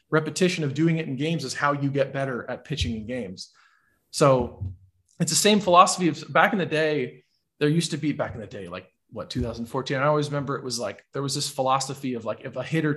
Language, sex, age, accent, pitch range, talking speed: English, male, 30-49, American, 135-175 Hz, 235 wpm